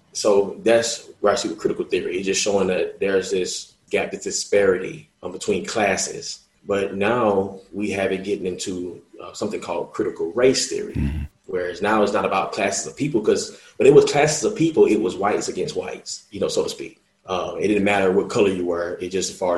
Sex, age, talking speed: male, 20-39, 215 wpm